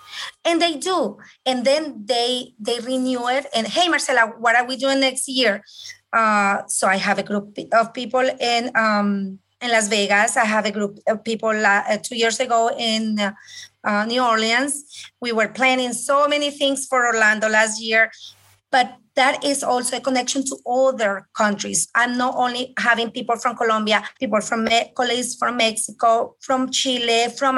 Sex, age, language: female, 30-49, English